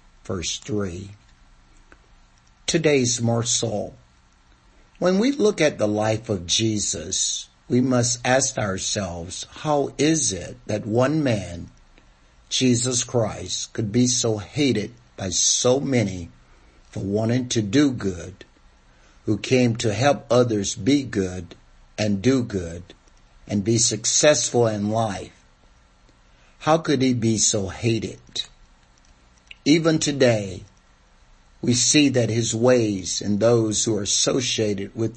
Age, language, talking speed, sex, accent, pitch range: 60-79, English, 120 wpm, male, American, 95-125 Hz